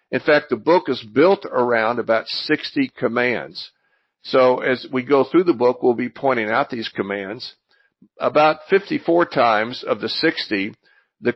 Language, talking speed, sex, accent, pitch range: English, 160 wpm, male, American, 115-145 Hz